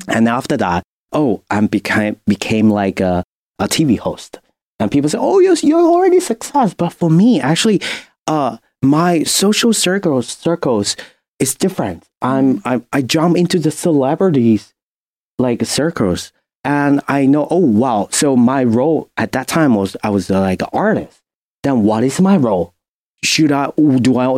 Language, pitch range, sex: English, 115-165 Hz, male